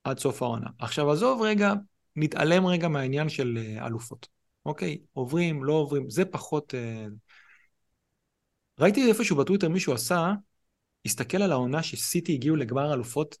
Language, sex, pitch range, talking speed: Hebrew, male, 120-165 Hz, 135 wpm